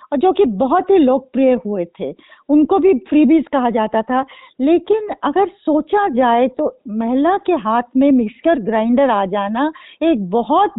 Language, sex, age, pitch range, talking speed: Hindi, female, 40-59, 255-320 Hz, 160 wpm